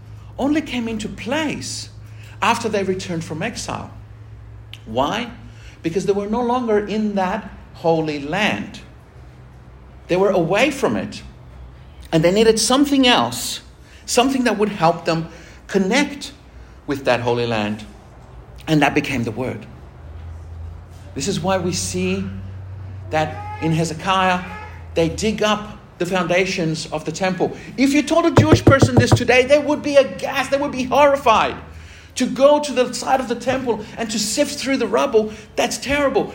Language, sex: English, male